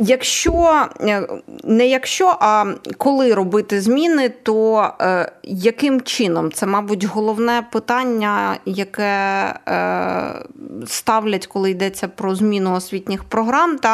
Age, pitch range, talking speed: 20-39, 190-225 Hz, 95 wpm